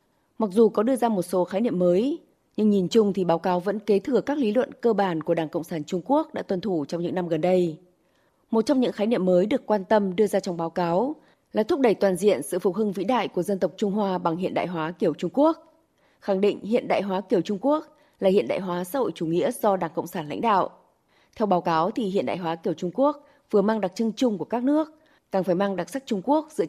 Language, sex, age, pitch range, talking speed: Vietnamese, female, 20-39, 175-220 Hz, 275 wpm